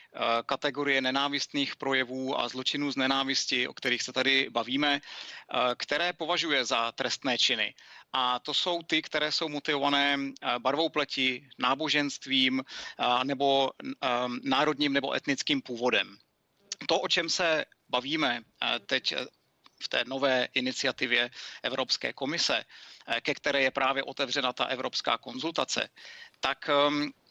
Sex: male